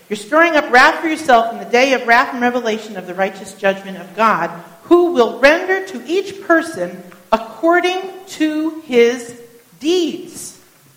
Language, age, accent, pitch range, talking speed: English, 50-69, American, 200-330 Hz, 160 wpm